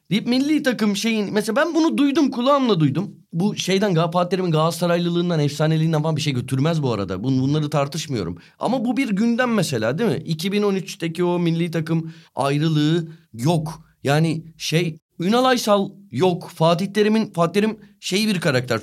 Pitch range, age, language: 160-215 Hz, 30-49, Turkish